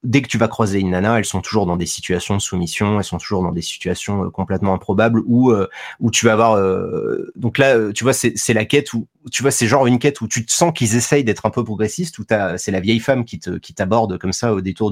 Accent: French